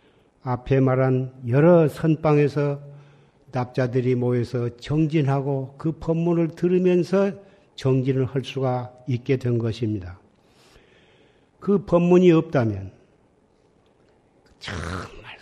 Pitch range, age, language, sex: 130-170 Hz, 50-69, Korean, male